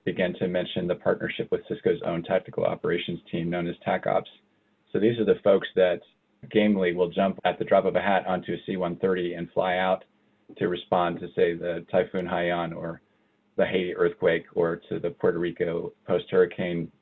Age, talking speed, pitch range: 40-59, 185 wpm, 85-105 Hz